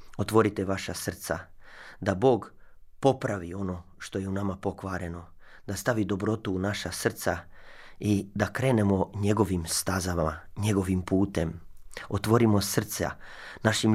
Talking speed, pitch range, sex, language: 120 wpm, 90-105 Hz, male, Croatian